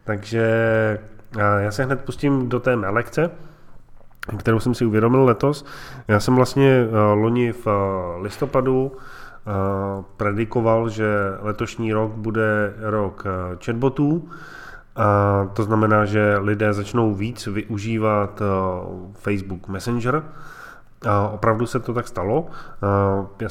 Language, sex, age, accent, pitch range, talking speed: Czech, male, 20-39, native, 105-120 Hz, 105 wpm